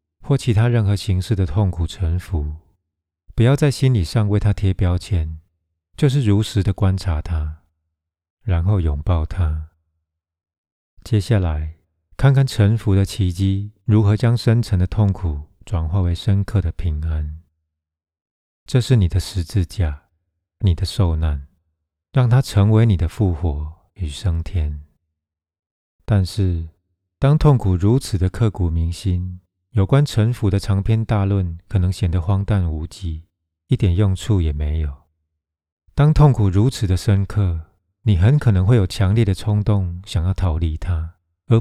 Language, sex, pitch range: Chinese, male, 80-105 Hz